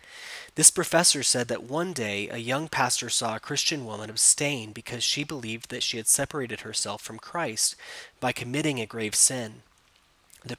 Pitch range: 110-135 Hz